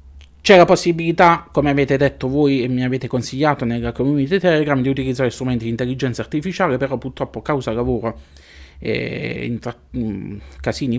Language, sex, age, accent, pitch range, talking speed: Italian, male, 20-39, native, 110-135 Hz, 160 wpm